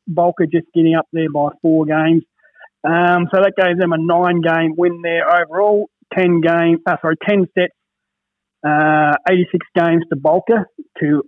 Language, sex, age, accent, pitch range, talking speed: English, male, 30-49, Australian, 160-190 Hz, 160 wpm